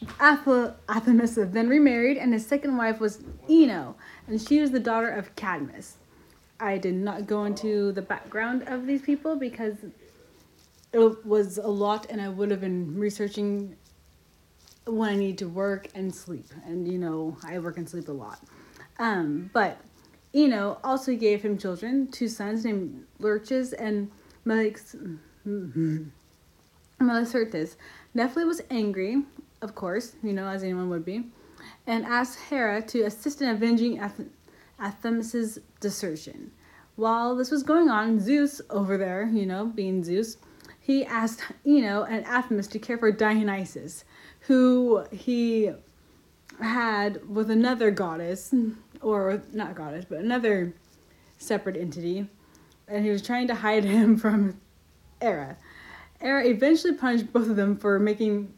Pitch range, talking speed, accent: 195-240 Hz, 145 wpm, American